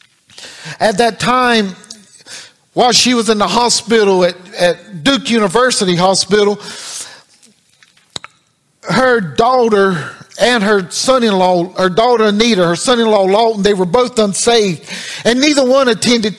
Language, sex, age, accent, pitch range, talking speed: English, male, 50-69, American, 180-230 Hz, 120 wpm